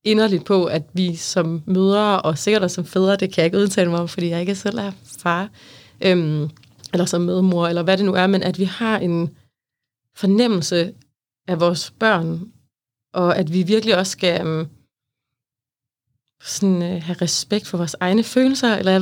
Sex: female